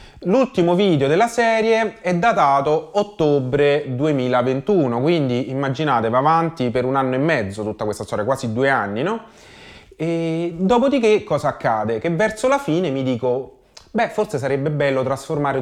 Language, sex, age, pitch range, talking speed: Italian, male, 30-49, 120-160 Hz, 150 wpm